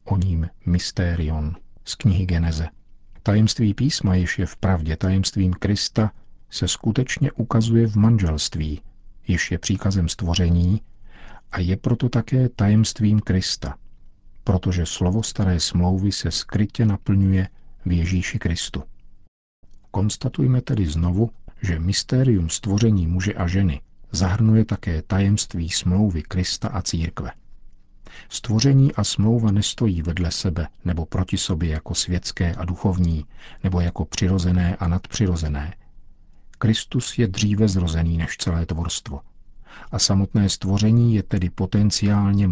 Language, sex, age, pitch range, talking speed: Czech, male, 50-69, 90-105 Hz, 120 wpm